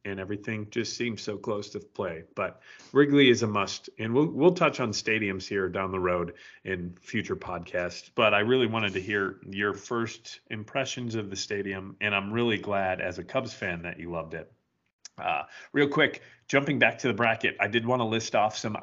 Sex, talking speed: male, 205 wpm